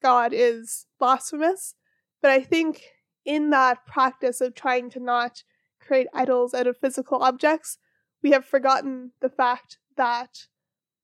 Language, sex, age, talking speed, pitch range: English, female, 20-39, 135 wpm, 245-270 Hz